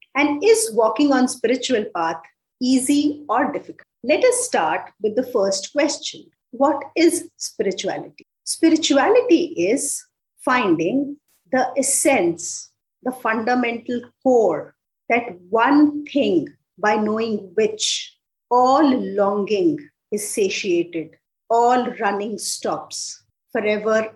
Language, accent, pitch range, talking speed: English, Indian, 205-305 Hz, 100 wpm